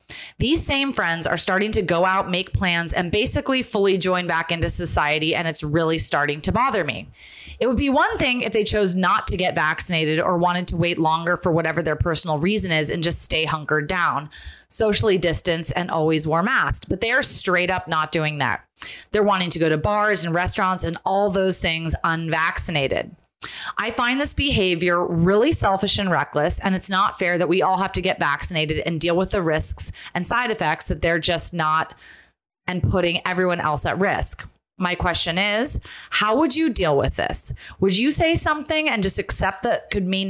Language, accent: English, American